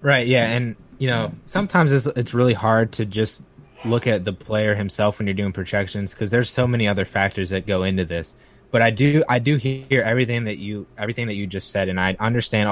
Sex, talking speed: male, 225 wpm